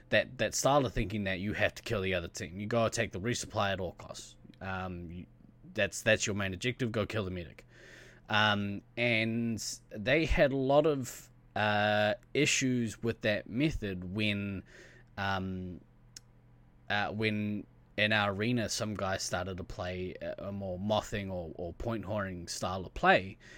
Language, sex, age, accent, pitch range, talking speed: English, male, 20-39, Australian, 95-115 Hz, 170 wpm